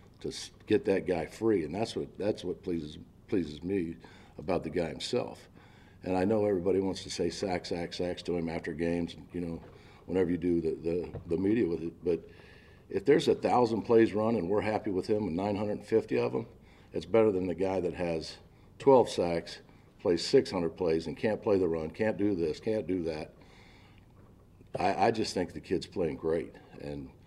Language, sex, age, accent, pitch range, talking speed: English, male, 50-69, American, 85-110 Hz, 200 wpm